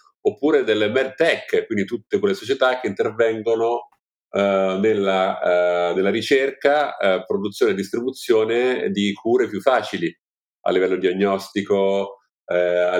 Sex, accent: male, native